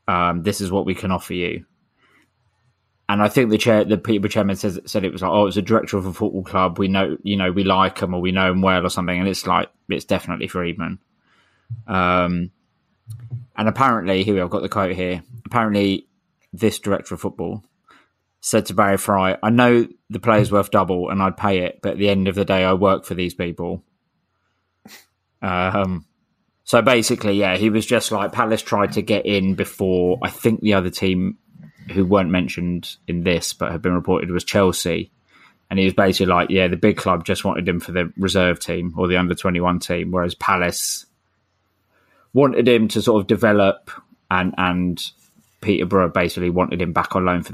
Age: 20-39